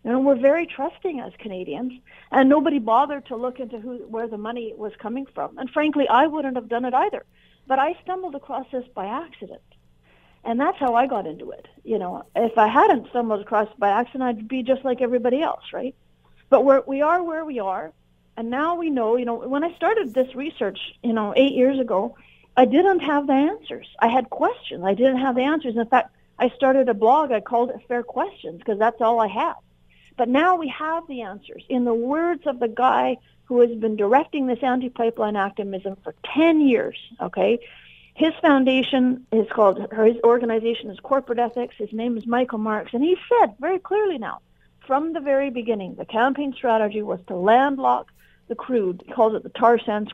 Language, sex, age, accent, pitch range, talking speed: English, female, 50-69, American, 225-280 Hz, 205 wpm